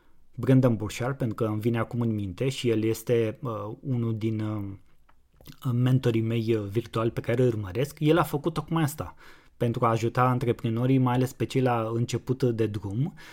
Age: 20-39